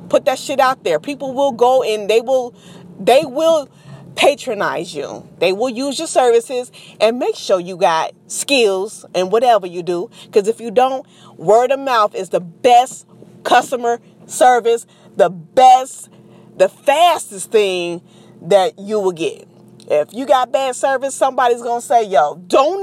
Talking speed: 165 wpm